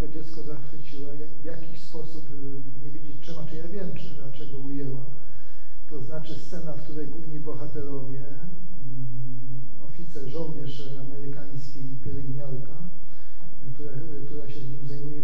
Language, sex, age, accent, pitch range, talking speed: Ukrainian, male, 40-59, Polish, 140-165 Hz, 135 wpm